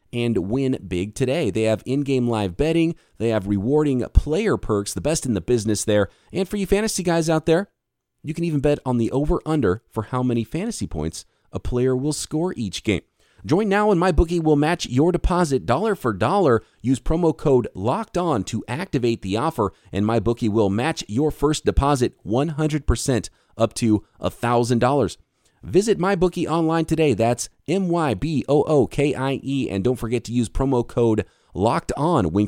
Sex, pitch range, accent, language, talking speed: male, 105-150 Hz, American, English, 180 wpm